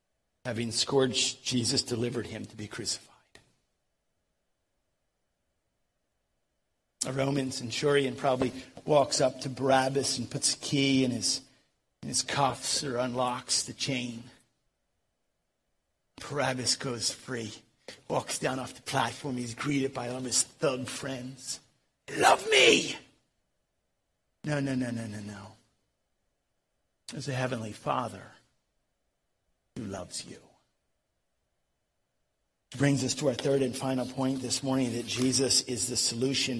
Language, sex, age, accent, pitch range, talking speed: English, male, 50-69, American, 115-135 Hz, 125 wpm